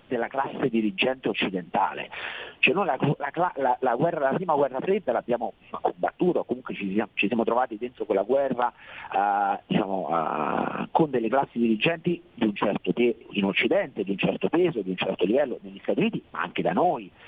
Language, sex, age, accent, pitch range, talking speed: Italian, male, 40-59, native, 110-150 Hz, 190 wpm